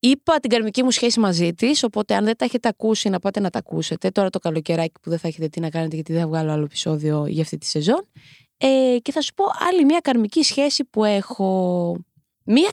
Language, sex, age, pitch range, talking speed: Greek, female, 20-39, 175-280 Hz, 235 wpm